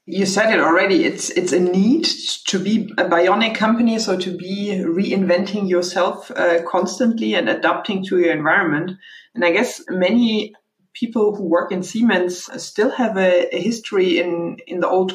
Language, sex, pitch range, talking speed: English, female, 170-190 Hz, 170 wpm